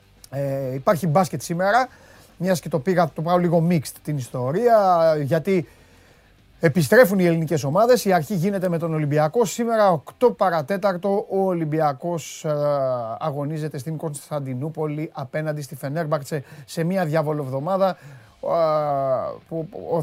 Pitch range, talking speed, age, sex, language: 140-175 Hz, 115 wpm, 30-49, male, Greek